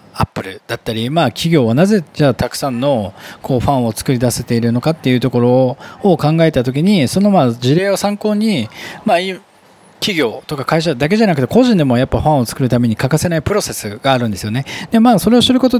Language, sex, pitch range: Japanese, male, 125-190 Hz